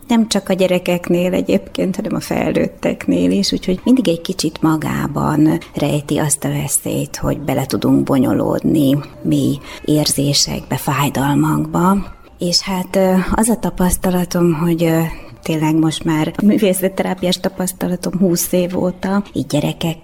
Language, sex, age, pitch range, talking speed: Hungarian, female, 20-39, 155-180 Hz, 125 wpm